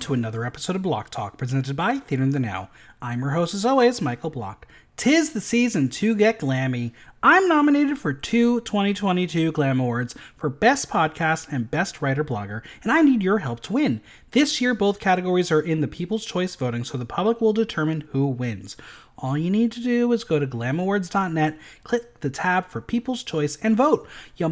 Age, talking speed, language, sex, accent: 30-49, 200 wpm, English, male, American